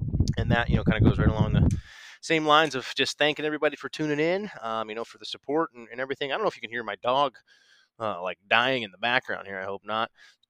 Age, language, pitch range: 20-39, English, 110-140 Hz